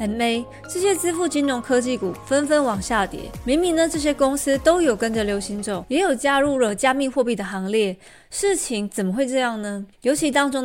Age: 20-39